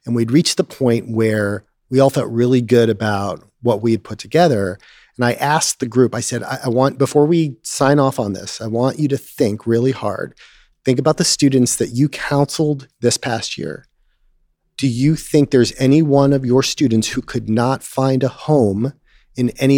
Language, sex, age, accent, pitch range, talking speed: English, male, 40-59, American, 110-135 Hz, 205 wpm